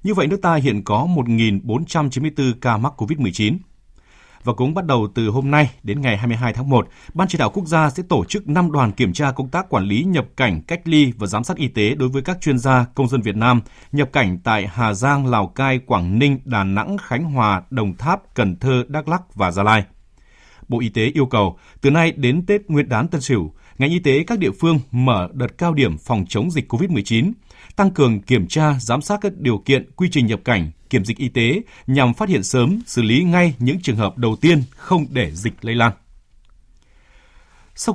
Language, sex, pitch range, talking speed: Vietnamese, male, 115-160 Hz, 220 wpm